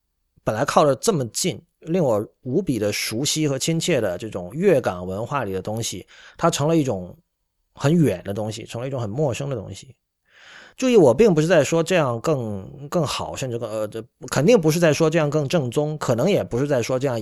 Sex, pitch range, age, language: male, 105-150 Hz, 30-49, Chinese